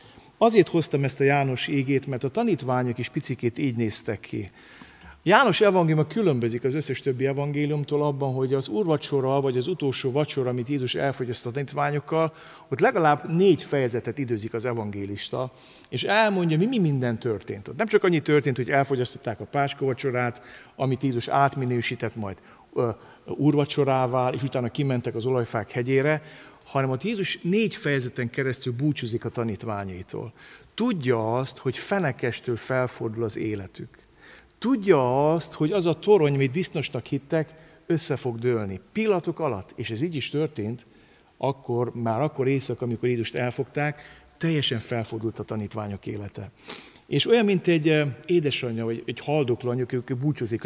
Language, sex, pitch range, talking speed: Hungarian, male, 120-150 Hz, 145 wpm